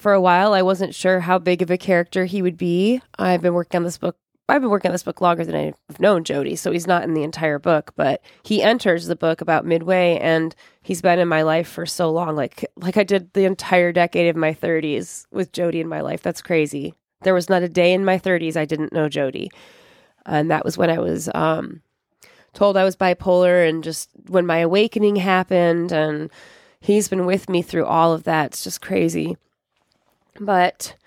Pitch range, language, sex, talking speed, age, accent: 170-200 Hz, English, female, 220 wpm, 20-39, American